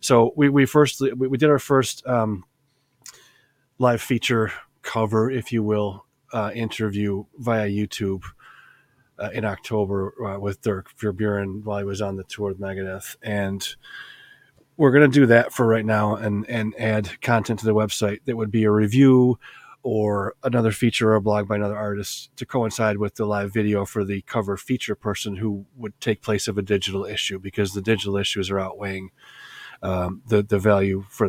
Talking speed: 180 wpm